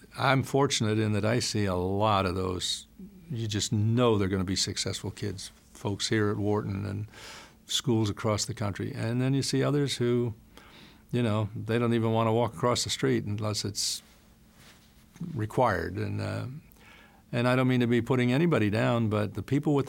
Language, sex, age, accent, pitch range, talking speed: English, male, 60-79, American, 105-125 Hz, 190 wpm